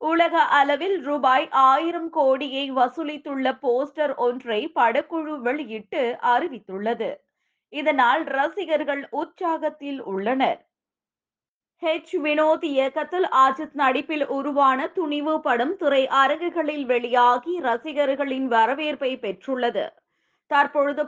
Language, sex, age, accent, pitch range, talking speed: Tamil, female, 20-39, native, 245-310 Hz, 85 wpm